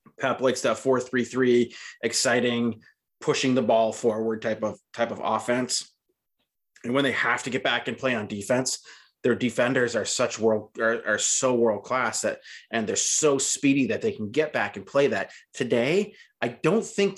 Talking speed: 190 wpm